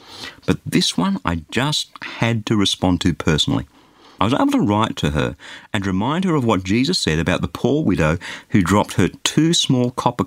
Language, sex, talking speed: English, male, 200 wpm